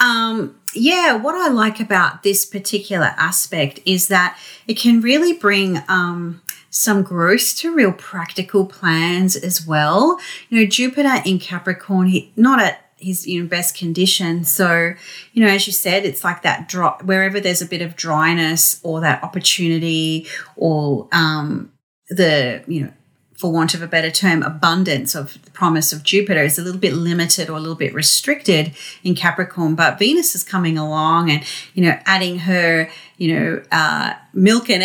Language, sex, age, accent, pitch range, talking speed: English, female, 30-49, Australian, 160-195 Hz, 170 wpm